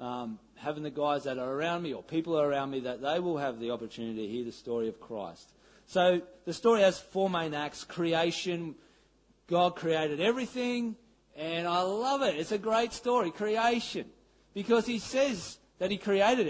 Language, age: English, 40-59